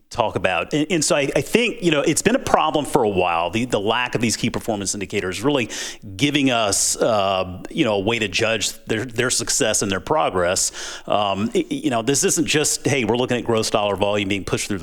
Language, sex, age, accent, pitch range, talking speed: English, male, 30-49, American, 105-135 Hz, 235 wpm